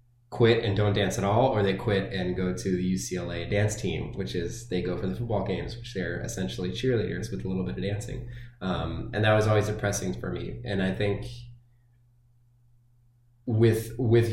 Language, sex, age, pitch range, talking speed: English, male, 20-39, 95-120 Hz, 195 wpm